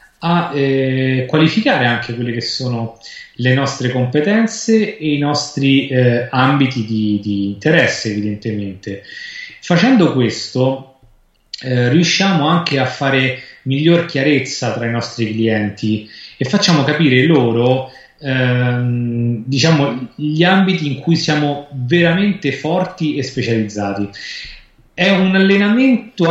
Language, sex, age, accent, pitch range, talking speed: Italian, male, 30-49, native, 120-160 Hz, 115 wpm